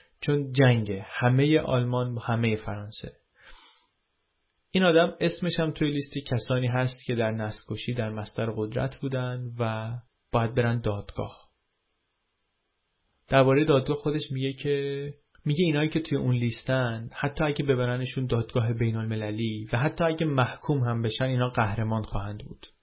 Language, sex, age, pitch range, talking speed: Persian, male, 30-49, 110-140 Hz, 140 wpm